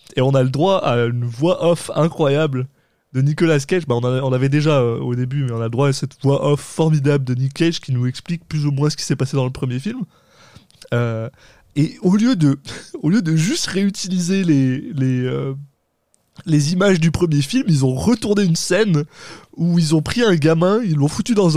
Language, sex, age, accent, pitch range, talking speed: French, male, 20-39, French, 135-170 Hz, 220 wpm